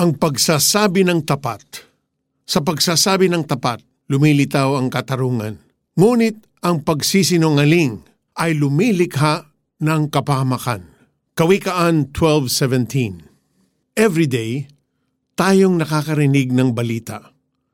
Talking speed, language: 90 wpm, Filipino